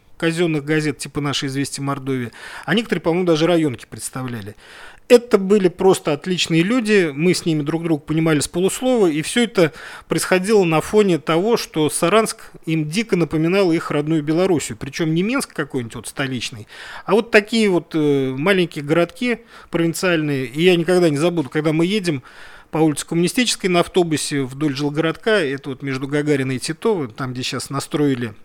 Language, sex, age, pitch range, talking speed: Russian, male, 40-59, 150-210 Hz, 160 wpm